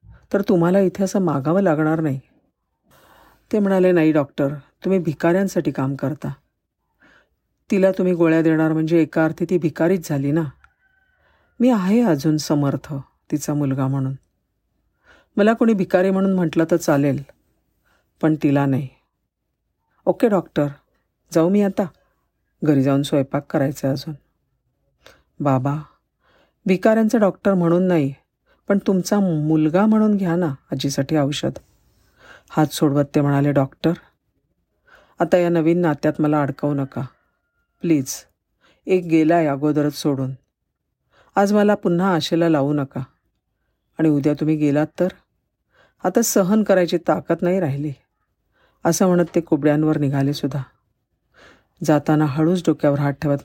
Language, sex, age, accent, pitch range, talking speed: Marathi, female, 50-69, native, 140-185 Hz, 125 wpm